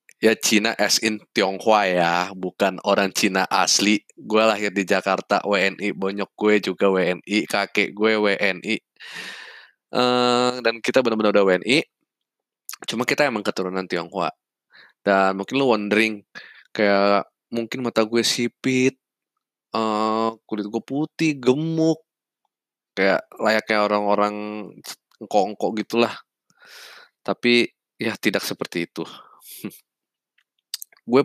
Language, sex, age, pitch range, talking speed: Indonesian, male, 20-39, 100-125 Hz, 115 wpm